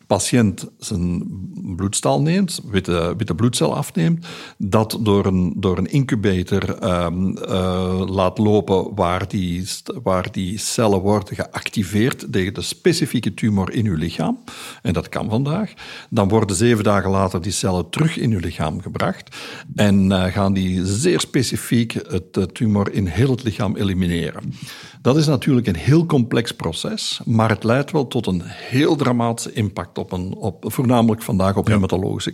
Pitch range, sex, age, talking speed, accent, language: 95-120 Hz, male, 60-79, 160 wpm, Belgian, Dutch